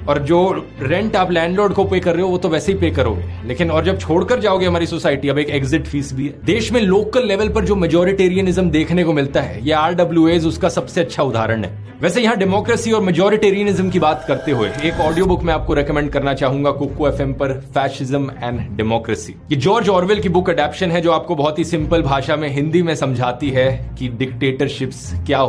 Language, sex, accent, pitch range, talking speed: Tamil, male, native, 140-180 Hz, 215 wpm